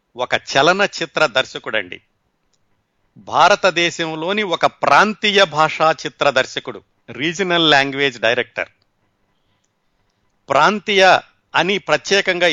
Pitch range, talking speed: 140-175 Hz, 80 wpm